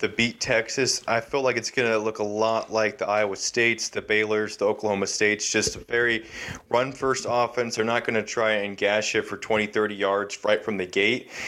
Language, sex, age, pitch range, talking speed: English, male, 20-39, 110-125 Hz, 225 wpm